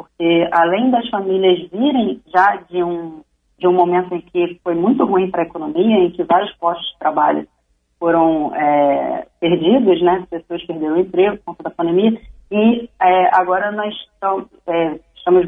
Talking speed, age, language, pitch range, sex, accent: 170 wpm, 30-49, Portuguese, 170-205 Hz, female, Brazilian